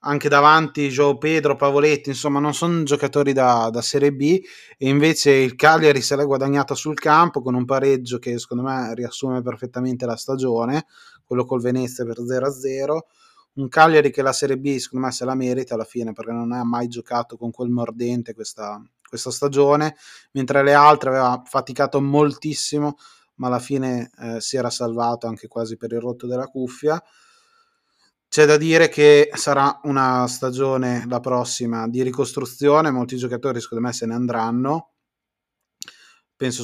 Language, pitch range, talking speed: Italian, 120-140 Hz, 165 wpm